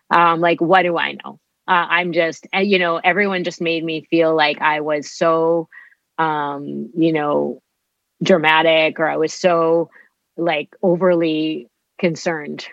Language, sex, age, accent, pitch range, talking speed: English, female, 30-49, American, 150-175 Hz, 145 wpm